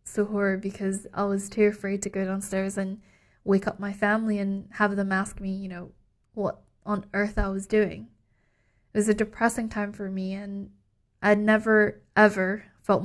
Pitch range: 190-210 Hz